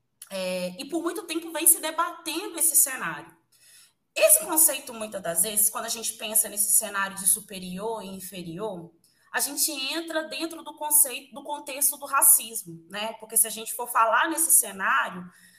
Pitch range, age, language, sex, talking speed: 225-320 Hz, 20-39, Portuguese, female, 170 wpm